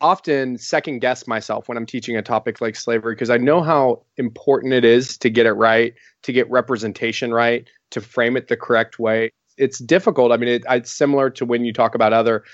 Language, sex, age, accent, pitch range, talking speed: English, male, 30-49, American, 115-155 Hz, 210 wpm